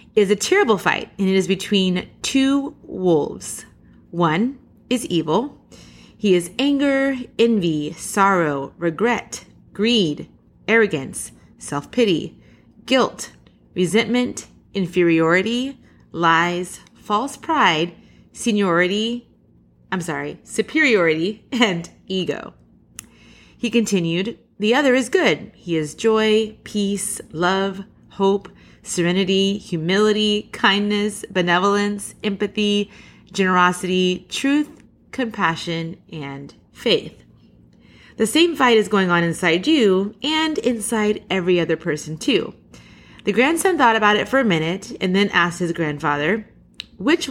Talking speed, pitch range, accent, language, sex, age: 105 wpm, 175-235 Hz, American, English, female, 30-49